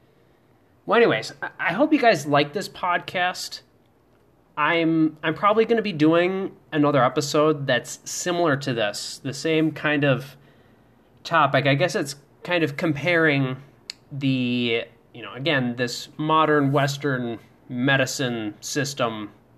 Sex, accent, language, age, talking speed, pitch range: male, American, English, 20-39, 130 wpm, 125-160 Hz